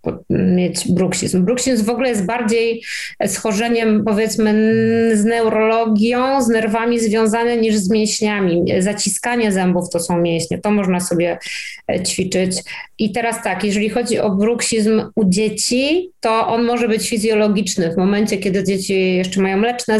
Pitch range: 195-225 Hz